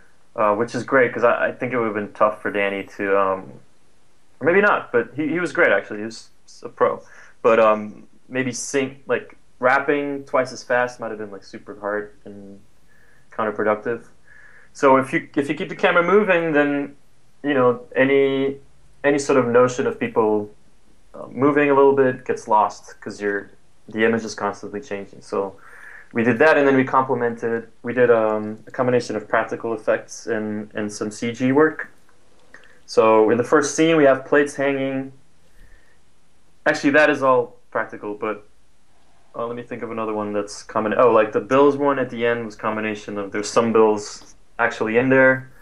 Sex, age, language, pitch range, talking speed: male, 20-39, English, 105-135 Hz, 185 wpm